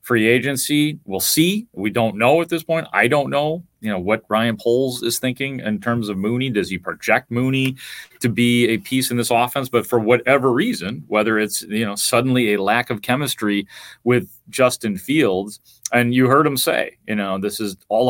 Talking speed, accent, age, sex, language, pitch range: 200 wpm, American, 30-49, male, English, 100-130 Hz